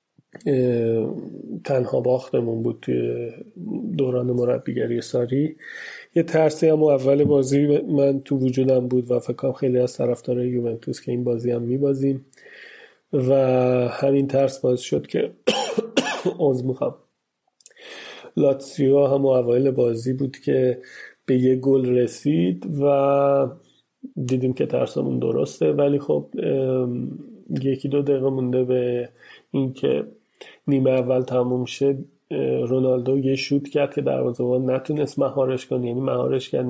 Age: 30-49